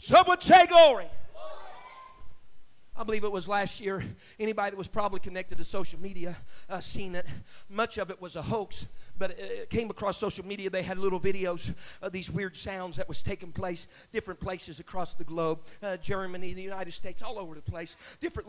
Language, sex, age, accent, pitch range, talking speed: English, male, 40-59, American, 190-235 Hz, 195 wpm